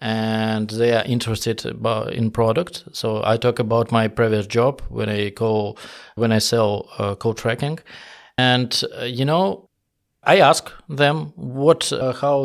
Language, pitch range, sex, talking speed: Russian, 115-140 Hz, male, 155 wpm